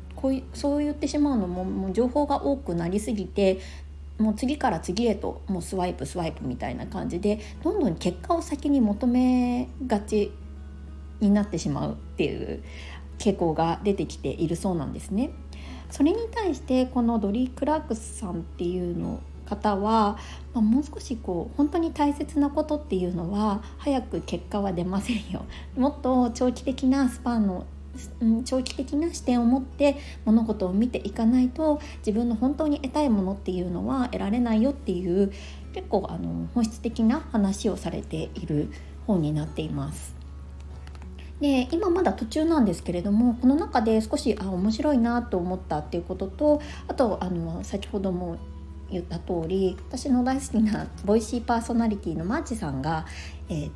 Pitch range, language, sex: 160-255 Hz, Japanese, female